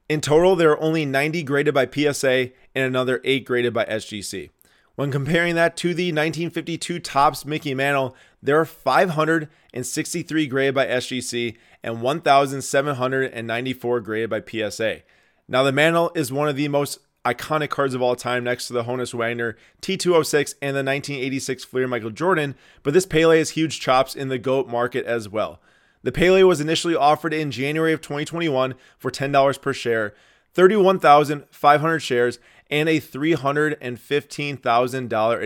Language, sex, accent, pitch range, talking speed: English, male, American, 125-155 Hz, 150 wpm